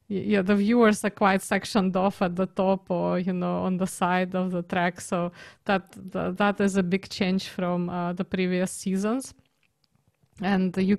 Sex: female